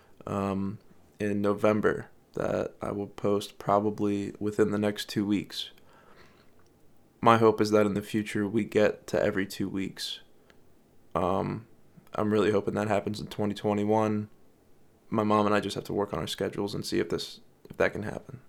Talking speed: 170 wpm